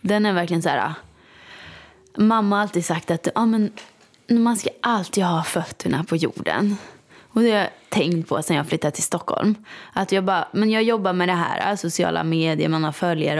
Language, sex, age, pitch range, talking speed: Swedish, female, 20-39, 165-210 Hz, 195 wpm